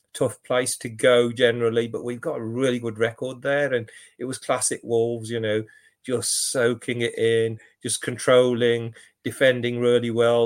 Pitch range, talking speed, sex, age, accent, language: 110-135 Hz, 165 wpm, male, 40-59, British, English